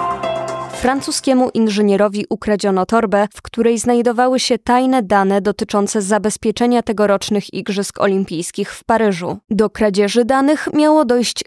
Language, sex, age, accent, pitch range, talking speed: Polish, female, 20-39, native, 200-250 Hz, 115 wpm